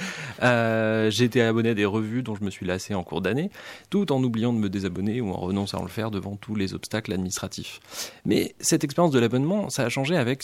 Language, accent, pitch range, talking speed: French, French, 100-130 Hz, 235 wpm